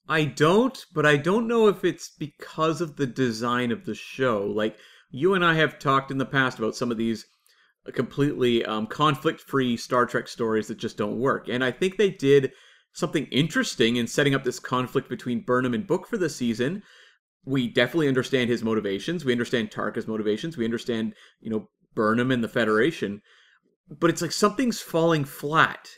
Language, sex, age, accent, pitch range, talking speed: English, male, 30-49, American, 120-165 Hz, 185 wpm